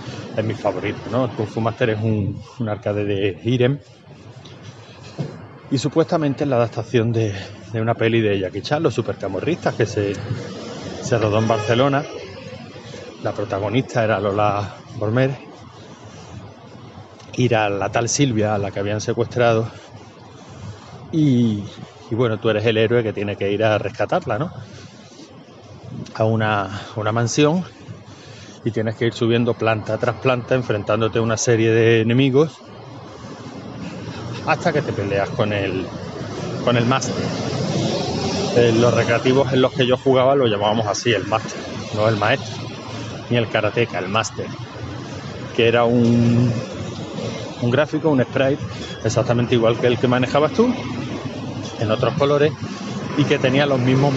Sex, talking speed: male, 145 wpm